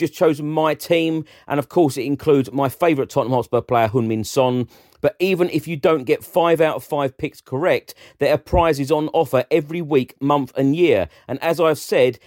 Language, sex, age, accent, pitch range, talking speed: English, male, 40-59, British, 130-155 Hz, 210 wpm